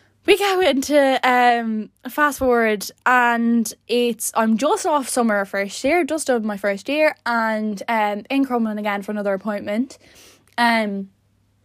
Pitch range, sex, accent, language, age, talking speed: 210-255 Hz, female, Irish, English, 10-29, 150 wpm